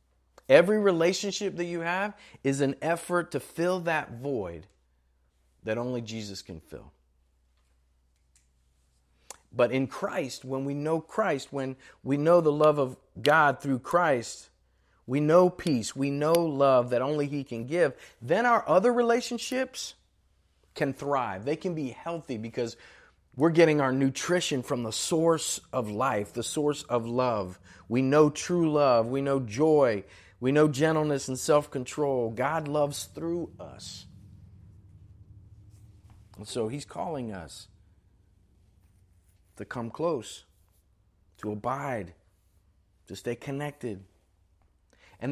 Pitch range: 95-150 Hz